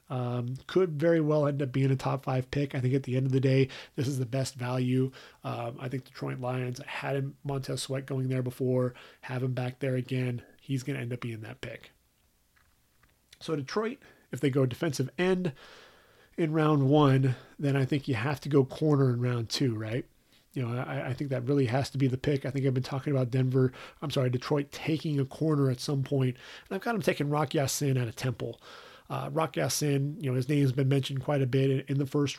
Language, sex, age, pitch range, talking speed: English, male, 30-49, 125-145 Hz, 235 wpm